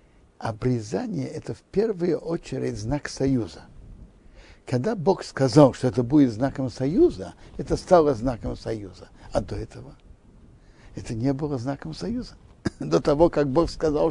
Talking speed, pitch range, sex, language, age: 140 wpm, 120-165 Hz, male, Russian, 60-79